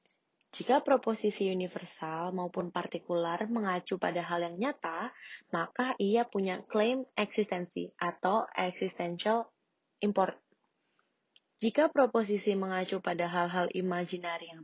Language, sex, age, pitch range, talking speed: Indonesian, female, 20-39, 180-235 Hz, 105 wpm